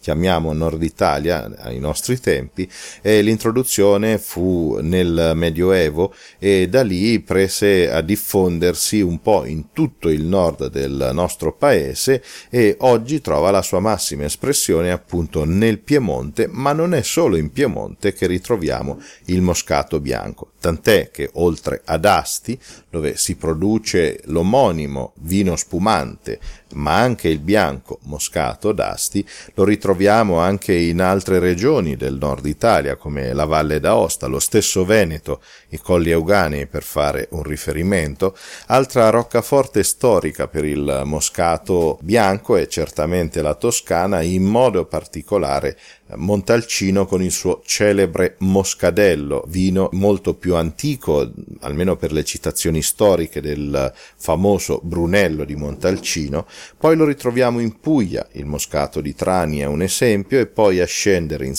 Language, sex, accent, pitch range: Italian, male, native, 75-105 Hz